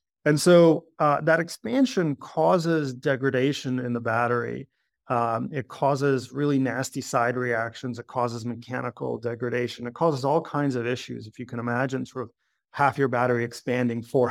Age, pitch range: 30-49, 120-155 Hz